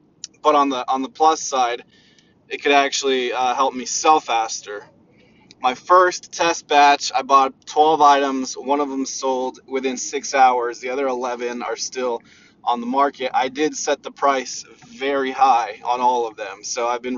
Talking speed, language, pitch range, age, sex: 180 wpm, English, 125-150 Hz, 20-39, male